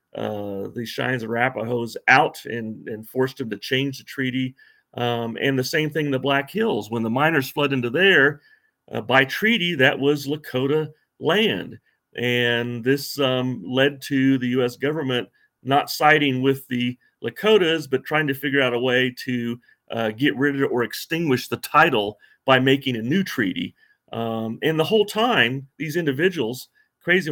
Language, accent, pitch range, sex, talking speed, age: English, American, 120-160 Hz, male, 170 wpm, 40-59